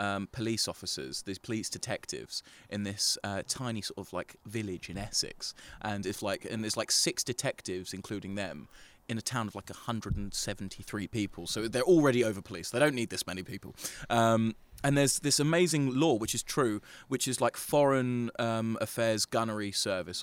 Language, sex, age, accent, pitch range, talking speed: English, male, 20-39, British, 100-125 Hz, 180 wpm